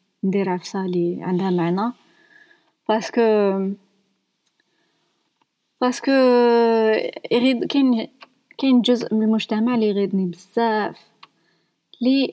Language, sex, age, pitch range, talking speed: Arabic, female, 20-39, 190-240 Hz, 75 wpm